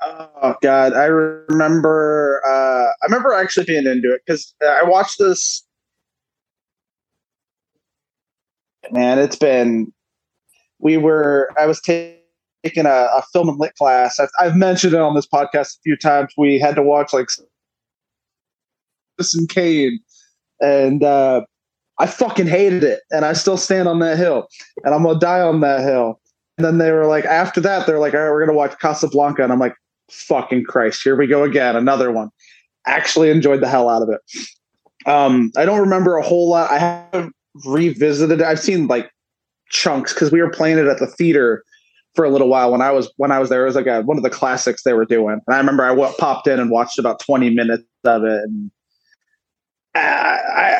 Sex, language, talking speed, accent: male, English, 190 wpm, American